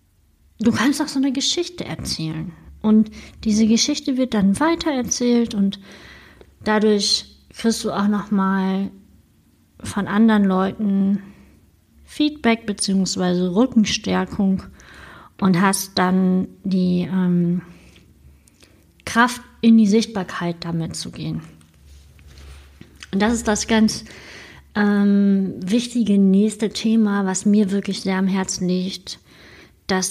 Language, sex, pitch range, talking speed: German, female, 175-215 Hz, 110 wpm